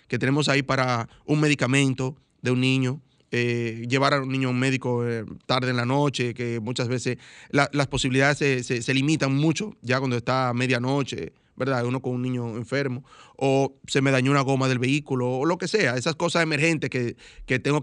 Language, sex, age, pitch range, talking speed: Spanish, male, 30-49, 125-145 Hz, 205 wpm